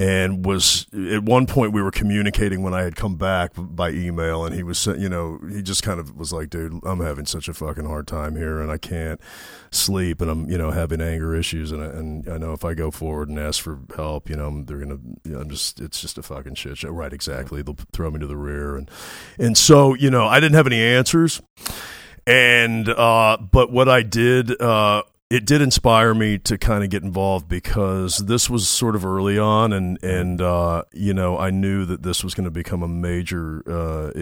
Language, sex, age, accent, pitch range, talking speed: English, male, 40-59, American, 80-115 Hz, 230 wpm